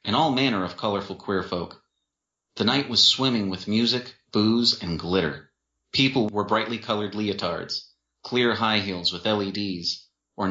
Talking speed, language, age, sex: 155 wpm, English, 30-49, male